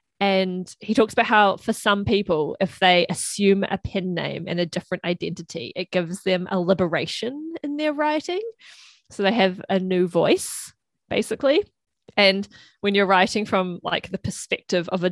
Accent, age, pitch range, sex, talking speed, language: Australian, 20-39, 180-215 Hz, female, 170 wpm, English